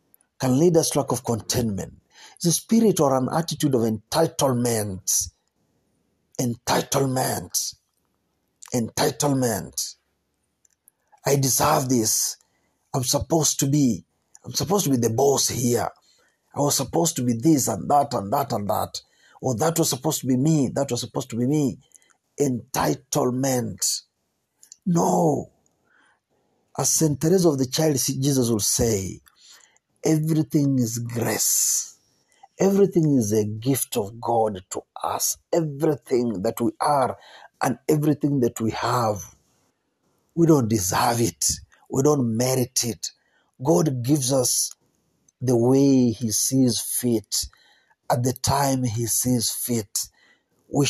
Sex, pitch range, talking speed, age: male, 120-145 Hz, 130 wpm, 50-69